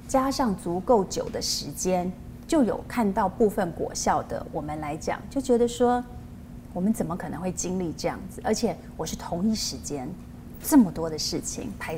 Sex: female